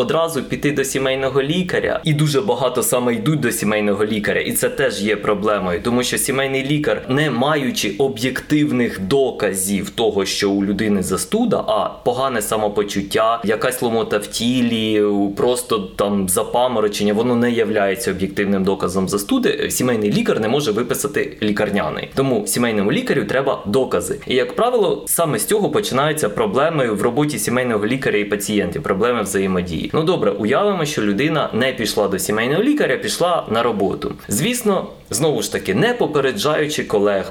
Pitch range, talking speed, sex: 100-145 Hz, 150 wpm, male